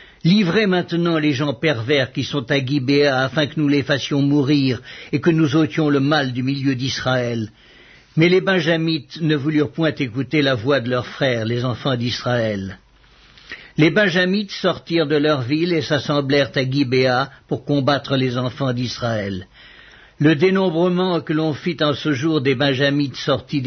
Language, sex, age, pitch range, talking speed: English, male, 60-79, 135-160 Hz, 165 wpm